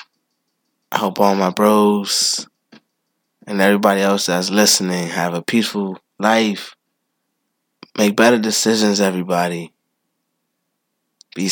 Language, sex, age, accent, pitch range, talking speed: English, male, 20-39, American, 110-175 Hz, 100 wpm